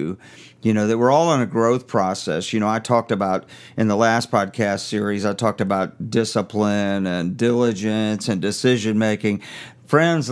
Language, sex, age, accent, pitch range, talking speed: English, male, 50-69, American, 110-130 Hz, 170 wpm